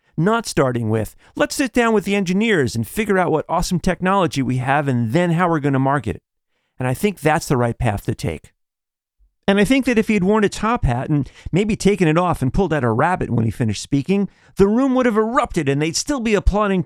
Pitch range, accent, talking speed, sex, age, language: 130-210 Hz, American, 240 wpm, male, 40-59, English